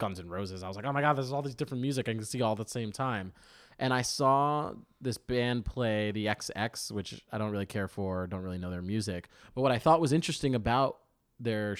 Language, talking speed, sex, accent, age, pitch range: English, 250 wpm, male, American, 20-39, 110-145 Hz